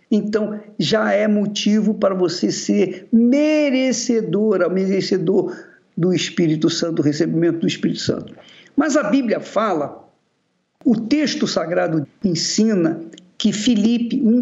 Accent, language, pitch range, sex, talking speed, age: Brazilian, Portuguese, 180-250 Hz, male, 115 wpm, 50-69